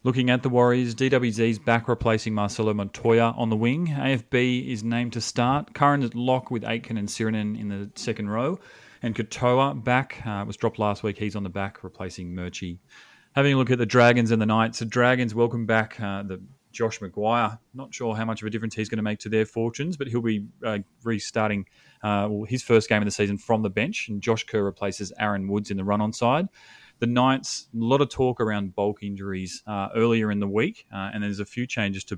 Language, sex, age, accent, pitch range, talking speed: English, male, 30-49, Australian, 100-125 Hz, 225 wpm